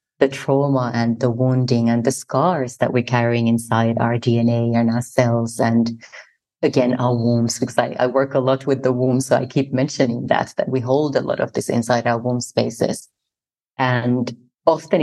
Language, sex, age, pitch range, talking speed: English, female, 30-49, 120-135 Hz, 190 wpm